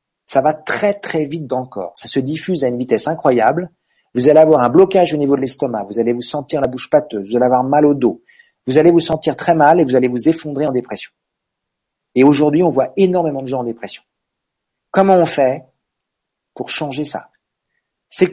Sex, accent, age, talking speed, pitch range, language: male, French, 40-59, 215 wpm, 125-170 Hz, French